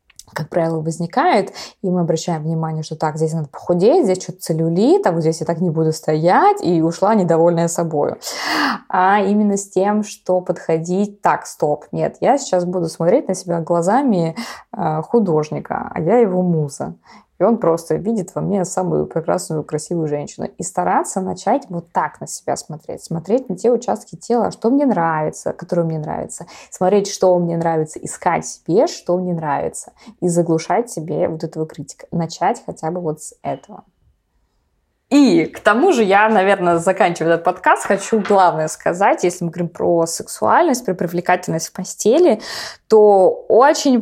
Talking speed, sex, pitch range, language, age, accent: 165 wpm, female, 165-205 Hz, Russian, 20-39, native